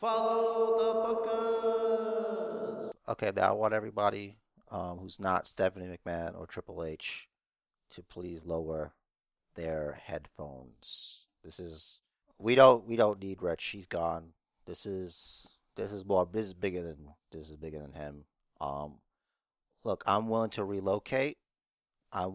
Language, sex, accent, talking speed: English, male, American, 140 wpm